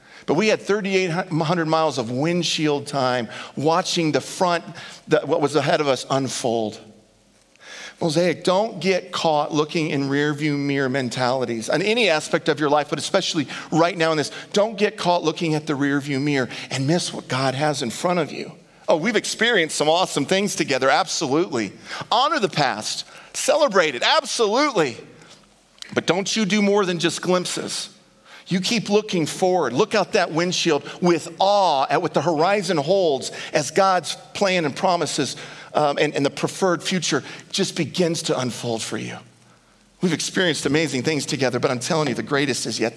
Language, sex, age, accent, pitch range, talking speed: English, male, 50-69, American, 135-170 Hz, 170 wpm